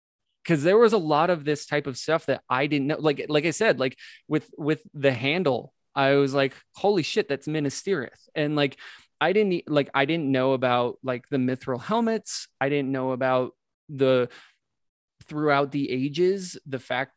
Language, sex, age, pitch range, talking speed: English, male, 20-39, 130-170 Hz, 185 wpm